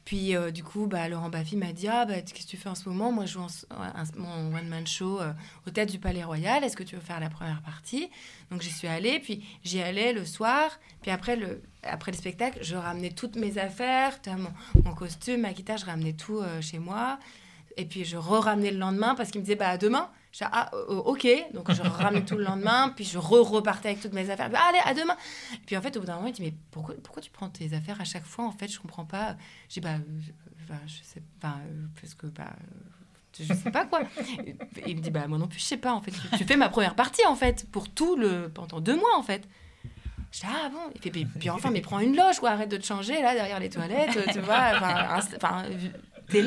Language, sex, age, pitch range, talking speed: French, female, 20-39, 170-225 Hz, 255 wpm